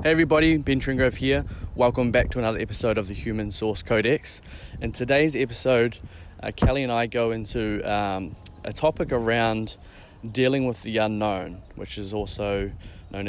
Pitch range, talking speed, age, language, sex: 100-115 Hz, 165 wpm, 20-39, English, male